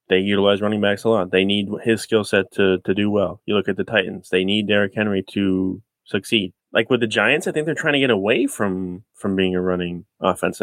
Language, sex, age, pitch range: English, male, 20-39, 95-115 Hz